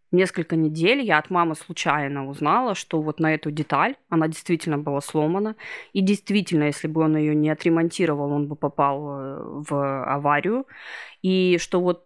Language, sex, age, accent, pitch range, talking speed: Russian, female, 20-39, native, 160-205 Hz, 160 wpm